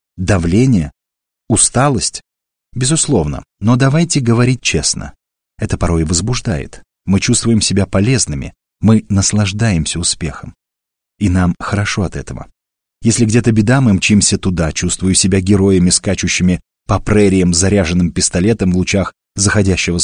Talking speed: 115 wpm